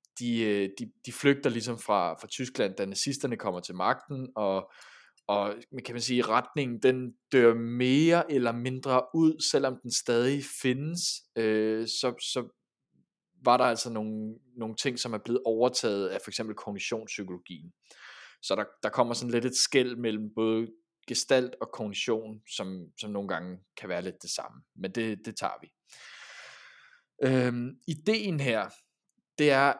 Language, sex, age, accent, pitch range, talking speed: Danish, male, 20-39, native, 110-135 Hz, 160 wpm